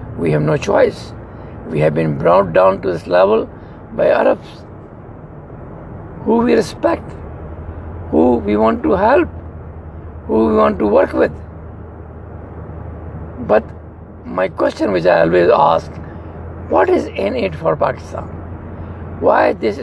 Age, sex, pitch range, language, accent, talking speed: 60-79, male, 80-105 Hz, English, Indian, 130 wpm